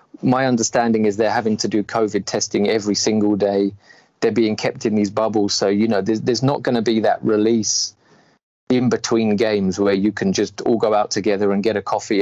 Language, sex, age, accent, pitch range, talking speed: English, male, 20-39, British, 100-115 Hz, 215 wpm